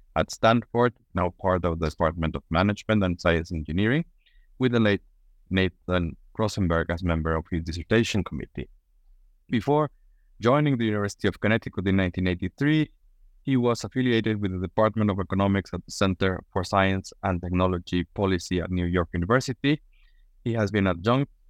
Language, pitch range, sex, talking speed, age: English, 90-115 Hz, male, 155 wpm, 30-49